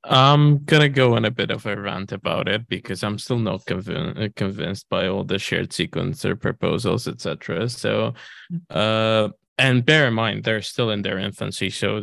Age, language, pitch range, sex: 20-39, Chinese, 100-125 Hz, male